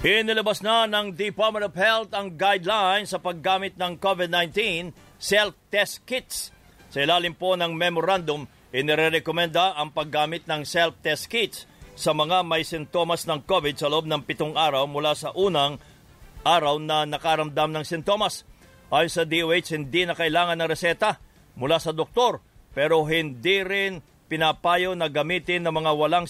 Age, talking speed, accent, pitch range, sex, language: 50-69, 145 wpm, Filipino, 155-180 Hz, male, English